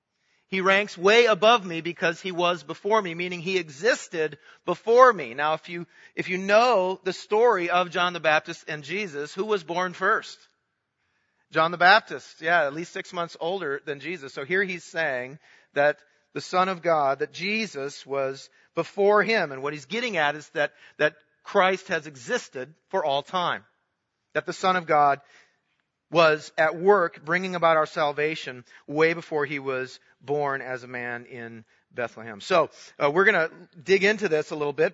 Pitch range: 140-185 Hz